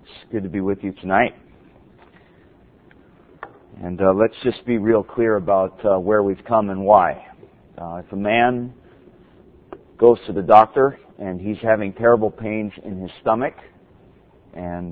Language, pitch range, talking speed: English, 95-120 Hz, 155 wpm